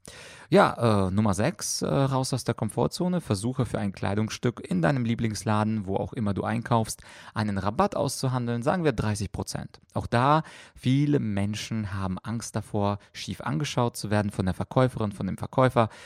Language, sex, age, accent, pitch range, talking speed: German, male, 30-49, German, 100-125 Hz, 160 wpm